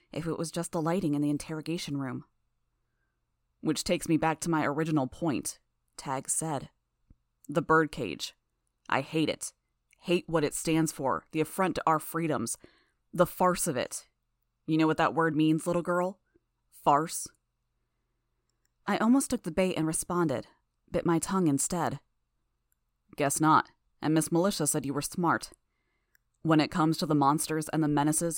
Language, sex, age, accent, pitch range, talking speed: English, female, 20-39, American, 150-170 Hz, 165 wpm